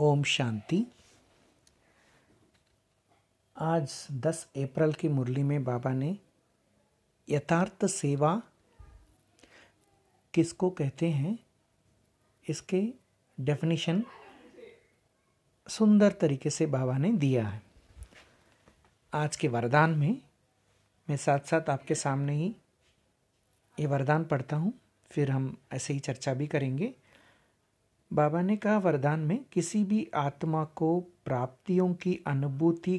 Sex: male